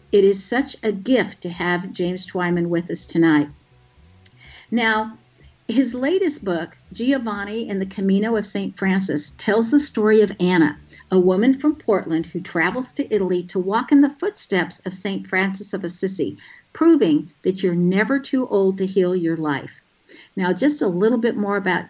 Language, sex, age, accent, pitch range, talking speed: English, female, 60-79, American, 175-230 Hz, 175 wpm